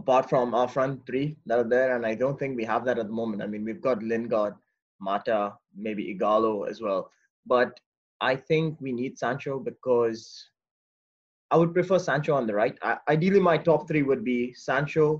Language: English